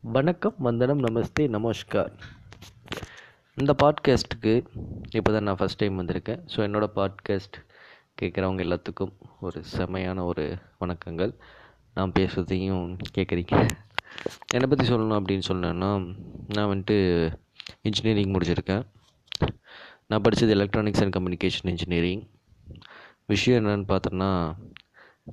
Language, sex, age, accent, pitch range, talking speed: Tamil, male, 20-39, native, 90-115 Hz, 100 wpm